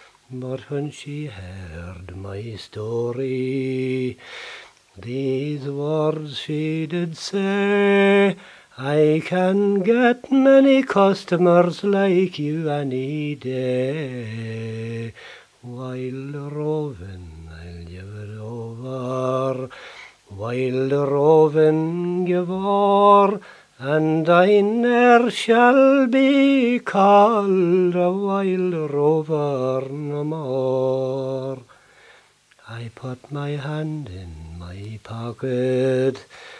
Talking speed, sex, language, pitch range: 80 wpm, male, English, 130-185 Hz